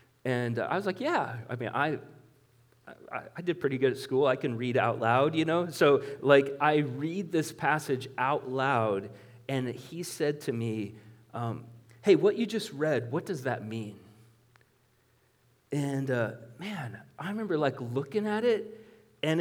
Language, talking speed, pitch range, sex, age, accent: English, 170 wpm, 120-150 Hz, male, 30-49, American